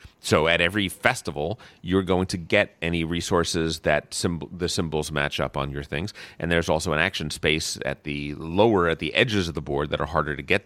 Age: 30-49